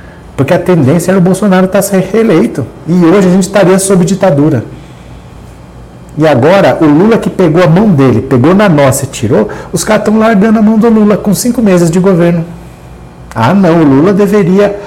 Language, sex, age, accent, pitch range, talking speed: Portuguese, male, 50-69, Brazilian, 135-195 Hz, 200 wpm